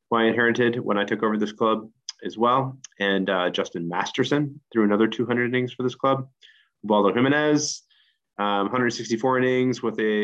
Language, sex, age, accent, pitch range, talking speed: English, male, 20-39, American, 95-120 Hz, 165 wpm